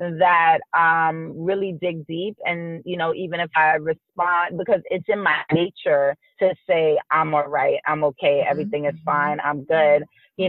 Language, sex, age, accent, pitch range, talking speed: English, female, 30-49, American, 160-205 Hz, 170 wpm